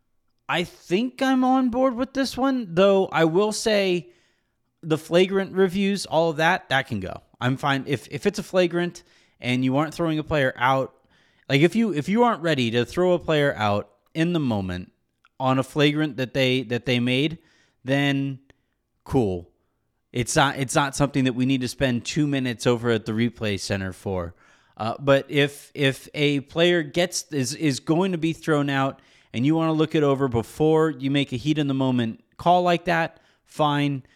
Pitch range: 125-170 Hz